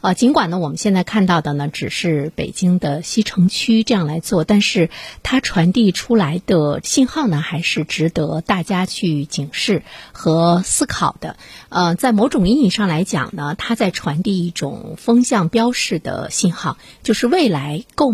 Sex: female